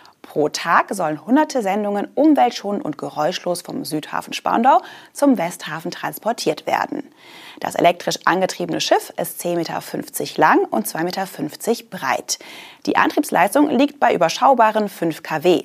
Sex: female